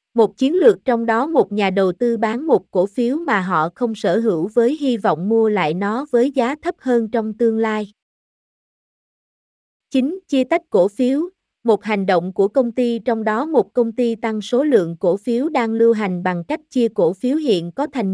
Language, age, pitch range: Vietnamese, 20-39, 200-250 Hz